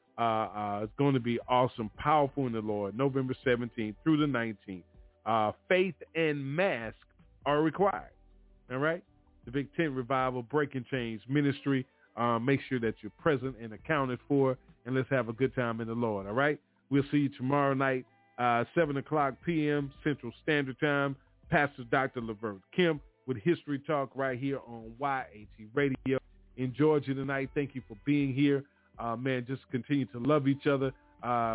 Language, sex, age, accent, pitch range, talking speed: English, male, 40-59, American, 115-140 Hz, 175 wpm